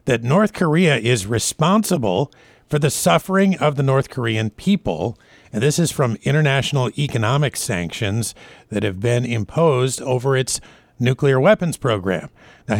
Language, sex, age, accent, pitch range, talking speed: English, male, 50-69, American, 115-160 Hz, 140 wpm